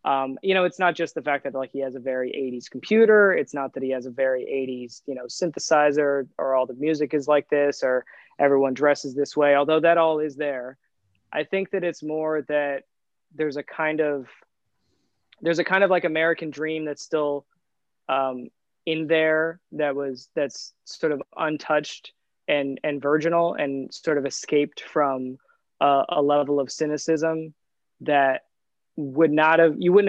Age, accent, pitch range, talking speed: 20-39, American, 135-155 Hz, 185 wpm